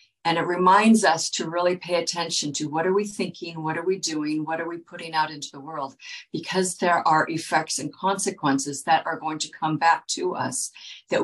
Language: English